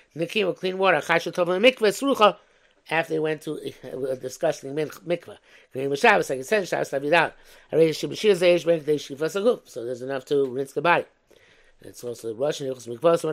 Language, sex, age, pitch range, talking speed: English, male, 60-79, 150-200 Hz, 75 wpm